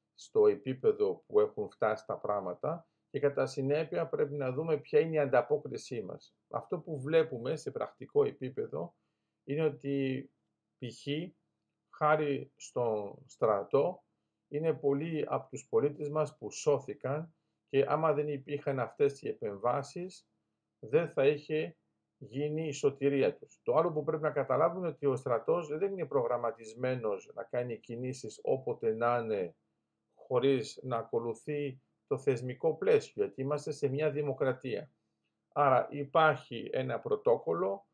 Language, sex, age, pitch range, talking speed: Greek, male, 50-69, 135-220 Hz, 135 wpm